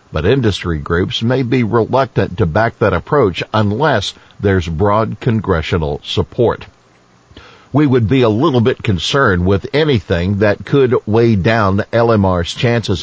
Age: 60-79